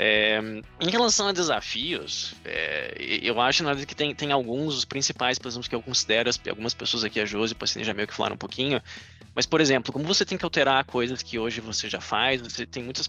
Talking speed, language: 240 wpm, Portuguese